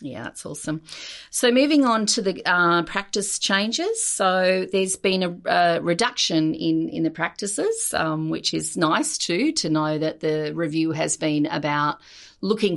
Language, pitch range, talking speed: English, 150-175 Hz, 165 wpm